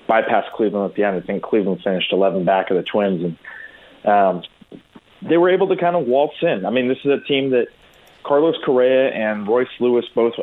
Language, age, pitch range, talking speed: English, 30-49, 105-125 Hz, 215 wpm